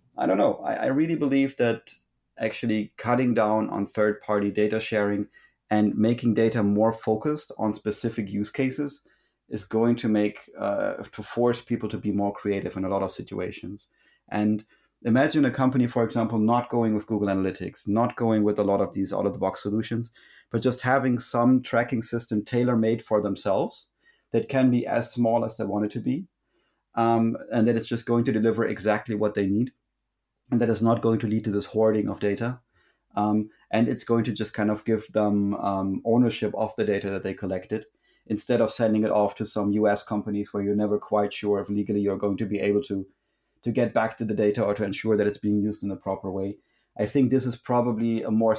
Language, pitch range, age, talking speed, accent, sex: English, 105-115 Hz, 30-49, 210 wpm, German, male